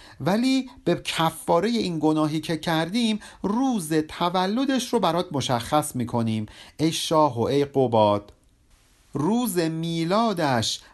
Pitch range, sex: 135-190 Hz, male